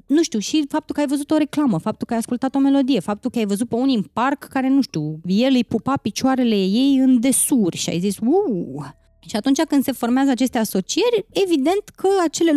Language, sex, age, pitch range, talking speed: Romanian, female, 20-39, 200-280 Hz, 225 wpm